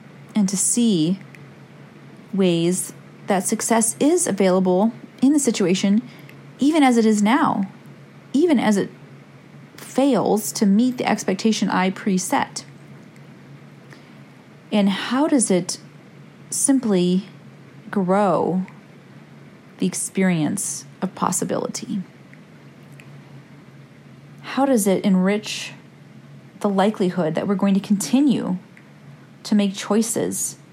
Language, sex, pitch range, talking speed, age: English, female, 185-235 Hz, 100 wpm, 30-49